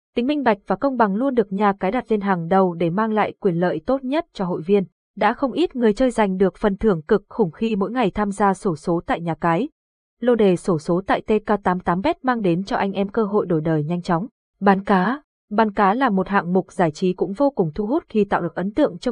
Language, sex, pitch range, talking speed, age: Vietnamese, female, 185-235 Hz, 270 wpm, 20-39